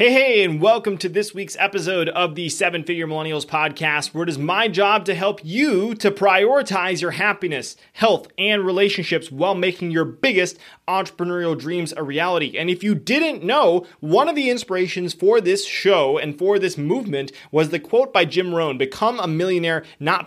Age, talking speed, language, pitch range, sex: 30-49, 185 wpm, English, 165-215 Hz, male